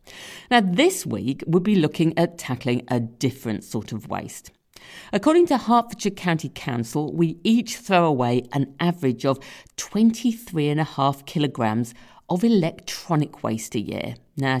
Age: 50-69